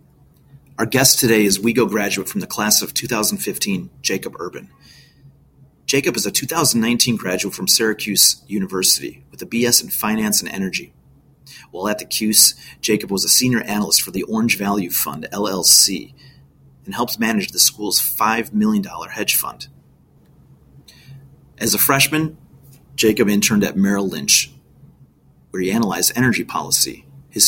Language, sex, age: English, male, 30-49